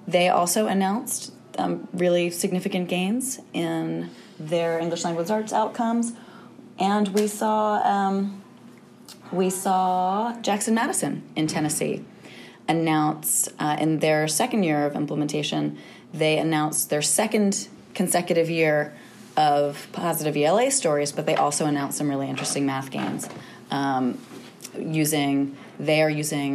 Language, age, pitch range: English, 30-49, 145-190 Hz